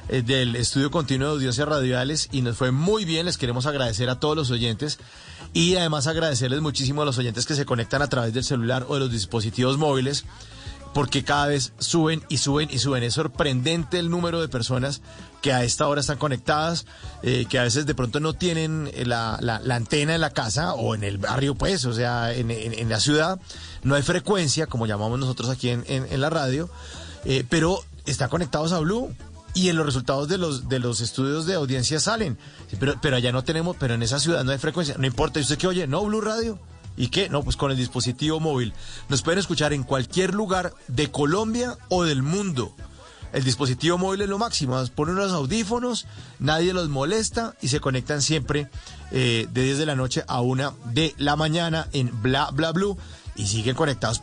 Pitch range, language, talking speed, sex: 125-160 Hz, Spanish, 210 wpm, male